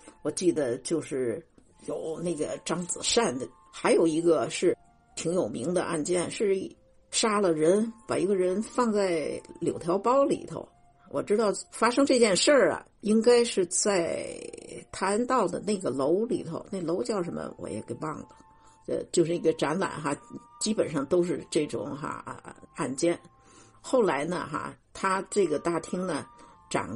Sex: female